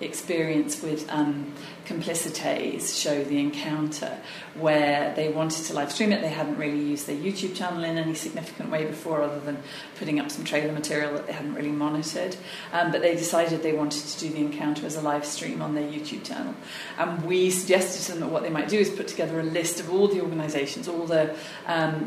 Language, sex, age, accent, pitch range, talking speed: English, female, 40-59, British, 150-170 Hz, 210 wpm